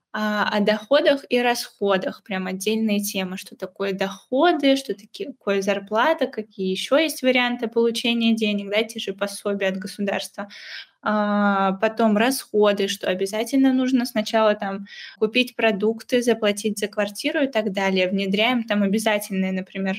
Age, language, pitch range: 10-29, Russian, 200-230 Hz